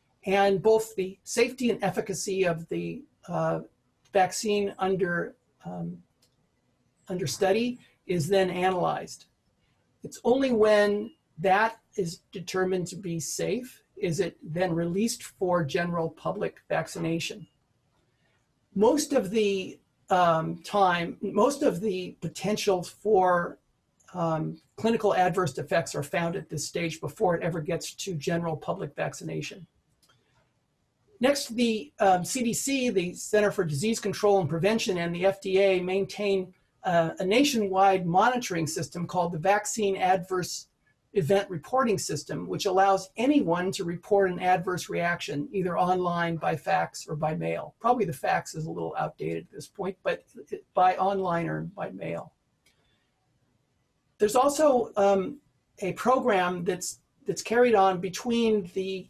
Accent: American